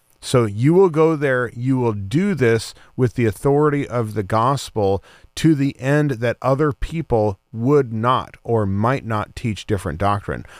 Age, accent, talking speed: 40-59, American, 165 wpm